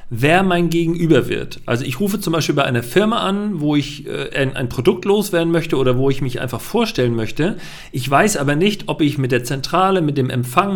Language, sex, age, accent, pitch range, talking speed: German, male, 40-59, German, 130-175 Hz, 225 wpm